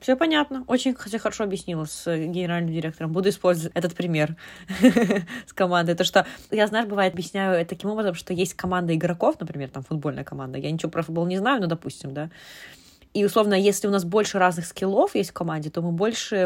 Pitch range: 160-195 Hz